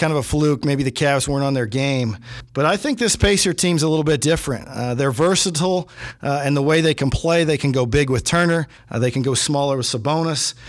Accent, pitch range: American, 130-165 Hz